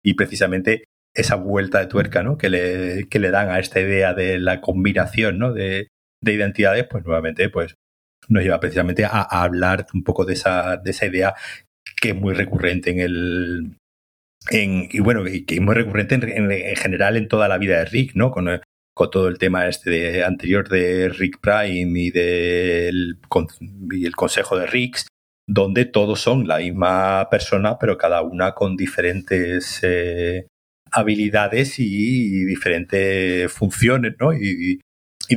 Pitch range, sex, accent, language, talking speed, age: 90-105 Hz, male, Spanish, Spanish, 170 wpm, 30-49